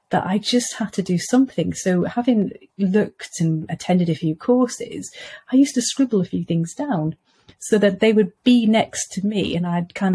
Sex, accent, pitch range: female, British, 175-235 Hz